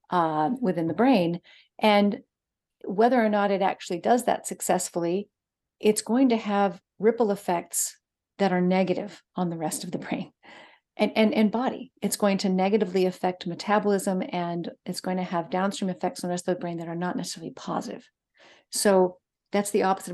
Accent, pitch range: American, 180-220 Hz